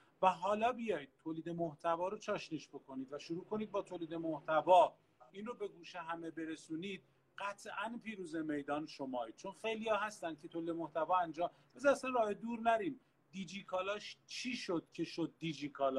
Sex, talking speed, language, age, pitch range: male, 150 wpm, Persian, 40-59, 160-205 Hz